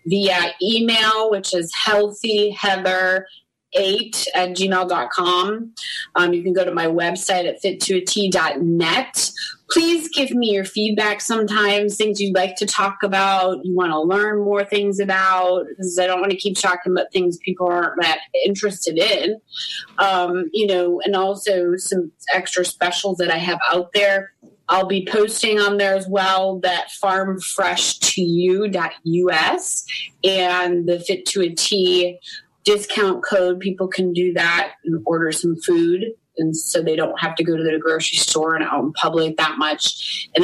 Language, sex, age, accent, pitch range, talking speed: English, female, 30-49, American, 165-195 Hz, 155 wpm